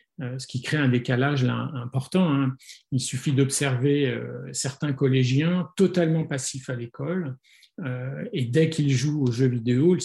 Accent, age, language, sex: French, 40-59, French, male